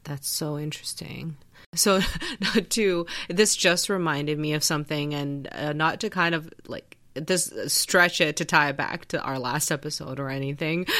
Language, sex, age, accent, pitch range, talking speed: English, female, 20-39, American, 140-175 Hz, 175 wpm